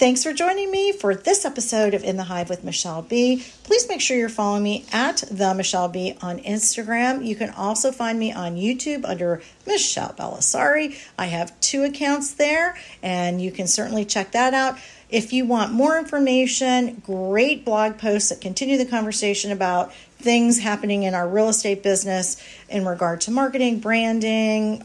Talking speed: 175 wpm